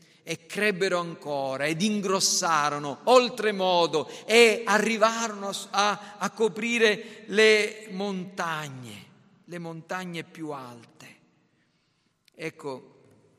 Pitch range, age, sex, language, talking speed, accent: 135-175 Hz, 50-69, male, Italian, 85 wpm, native